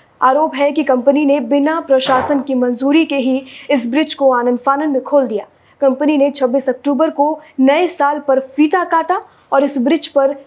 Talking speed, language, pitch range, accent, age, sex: 190 wpm, Hindi, 260-310 Hz, native, 20-39, female